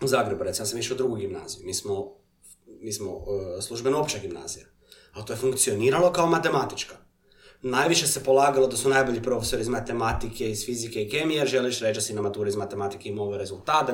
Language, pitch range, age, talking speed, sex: Croatian, 110-140 Hz, 30-49, 195 wpm, male